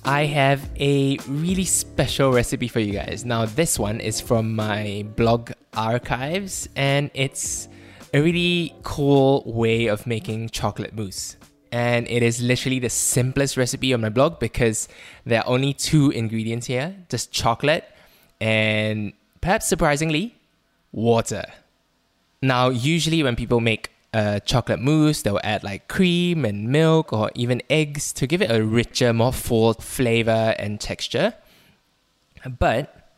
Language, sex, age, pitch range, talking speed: English, male, 10-29, 110-135 Hz, 140 wpm